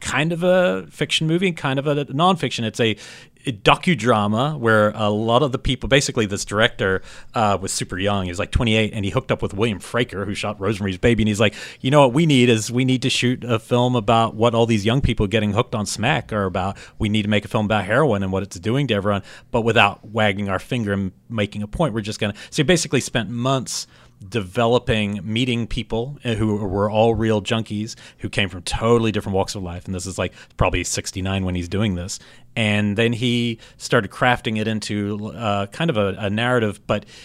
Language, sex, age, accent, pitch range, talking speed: English, male, 30-49, American, 100-125 Hz, 225 wpm